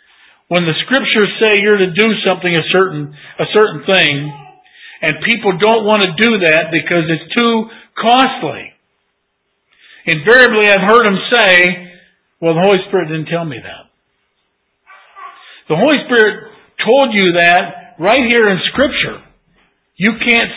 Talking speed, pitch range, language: 145 wpm, 190-270 Hz, English